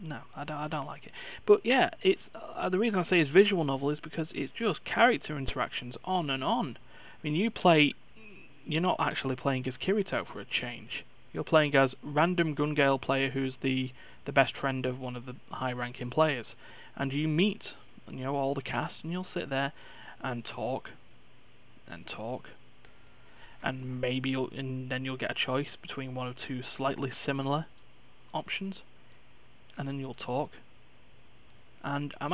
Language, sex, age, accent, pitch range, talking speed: English, male, 30-49, British, 130-155 Hz, 175 wpm